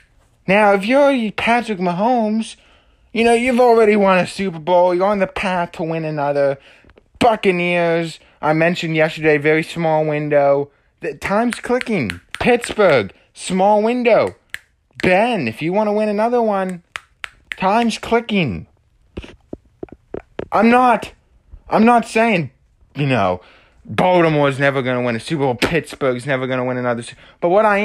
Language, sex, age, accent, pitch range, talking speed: English, male, 20-39, American, 155-215 Hz, 140 wpm